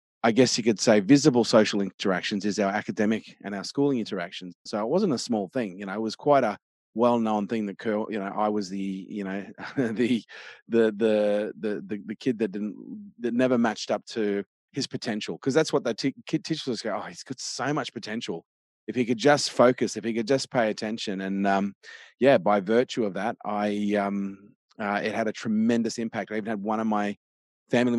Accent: Australian